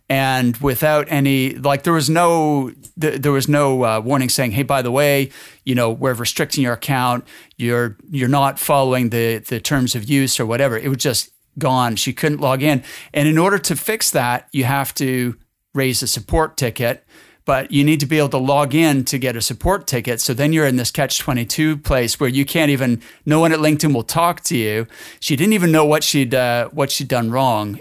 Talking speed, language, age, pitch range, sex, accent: 220 wpm, English, 40-59, 120-145 Hz, male, American